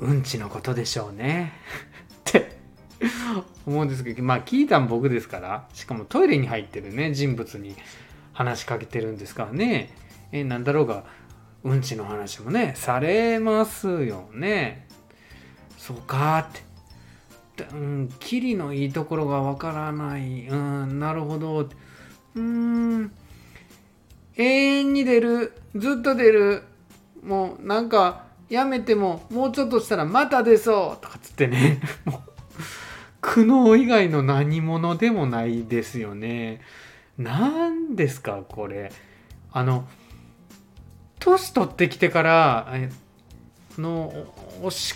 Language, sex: Japanese, male